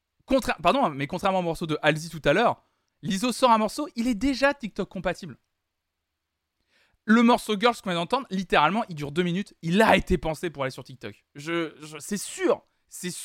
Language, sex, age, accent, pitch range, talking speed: French, male, 20-39, French, 160-250 Hz, 200 wpm